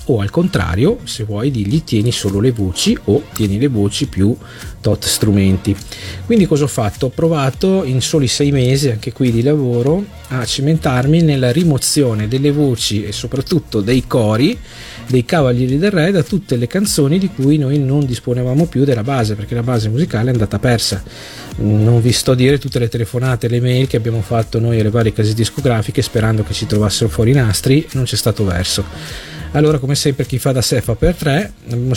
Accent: native